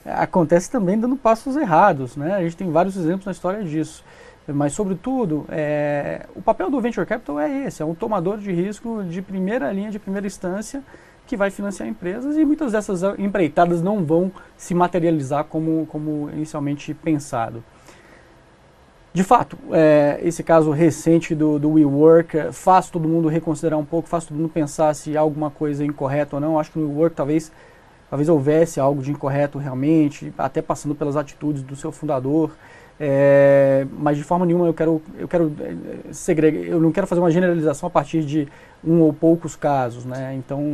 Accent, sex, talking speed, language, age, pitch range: Brazilian, male, 175 wpm, Portuguese, 20-39, 150-185 Hz